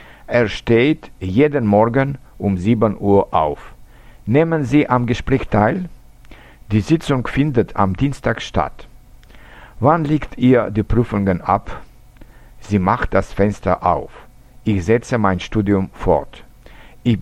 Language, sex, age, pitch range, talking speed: French, male, 60-79, 105-125 Hz, 125 wpm